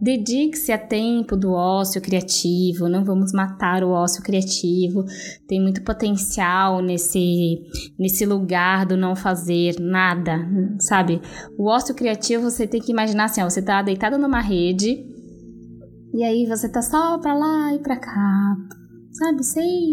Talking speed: 150 wpm